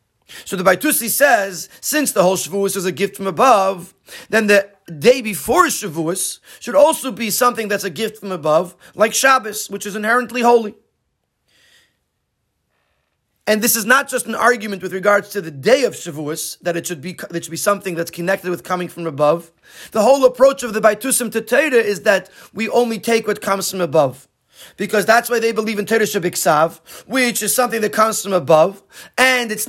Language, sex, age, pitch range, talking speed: English, male, 30-49, 195-245 Hz, 190 wpm